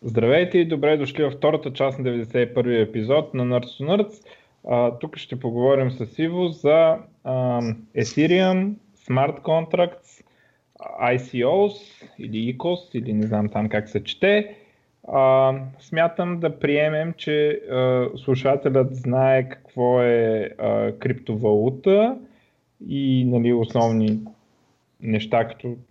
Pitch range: 110-140 Hz